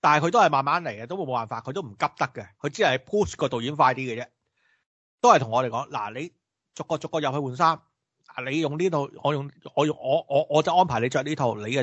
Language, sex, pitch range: Chinese, male, 125-165 Hz